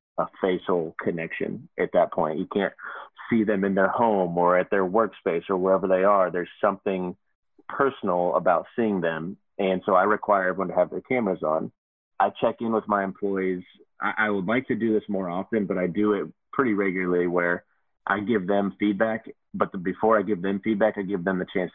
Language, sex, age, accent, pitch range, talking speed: English, male, 30-49, American, 90-105 Hz, 205 wpm